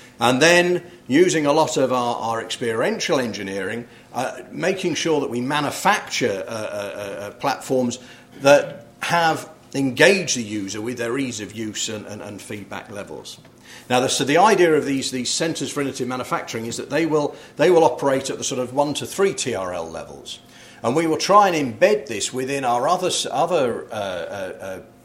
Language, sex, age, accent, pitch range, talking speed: English, male, 40-59, British, 115-145 Hz, 180 wpm